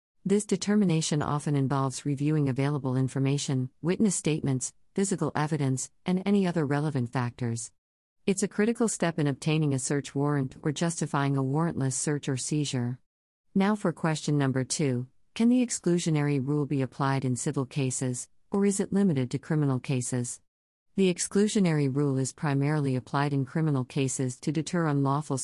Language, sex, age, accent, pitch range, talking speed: English, female, 50-69, American, 130-160 Hz, 155 wpm